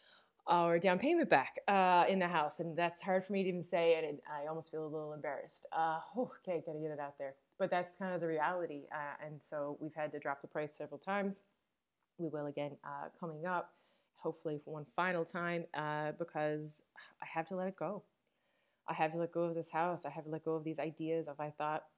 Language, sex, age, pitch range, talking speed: English, female, 20-39, 150-185 Hz, 240 wpm